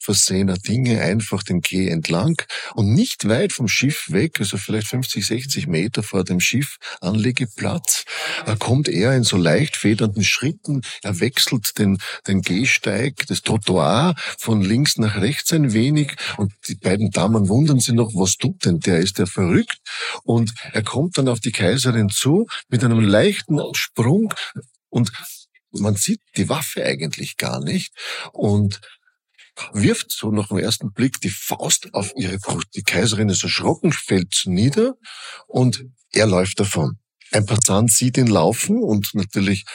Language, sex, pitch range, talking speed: German, male, 100-130 Hz, 155 wpm